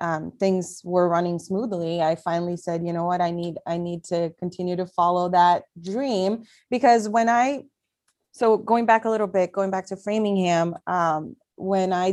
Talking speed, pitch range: 185 wpm, 170-200 Hz